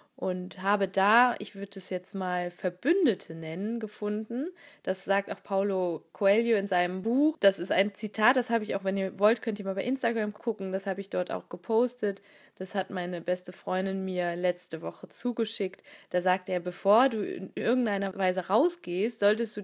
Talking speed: 190 wpm